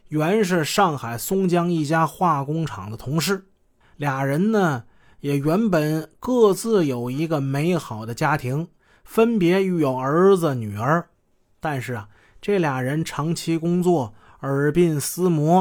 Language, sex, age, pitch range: Chinese, male, 20-39, 130-180 Hz